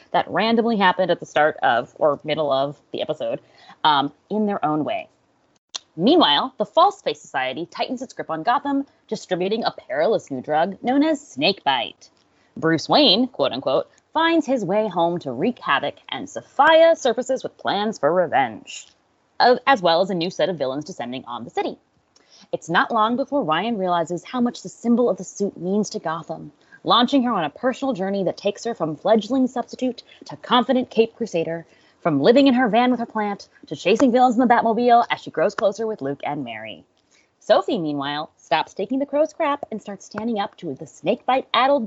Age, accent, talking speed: 20-39, American, 190 wpm